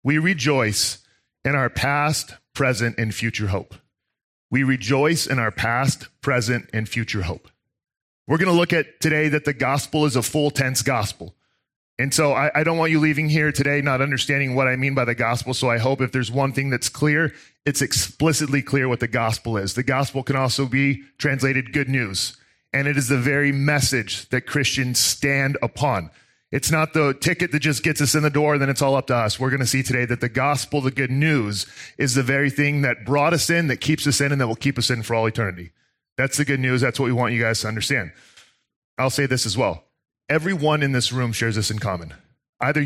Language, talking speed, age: English, 225 wpm, 40-59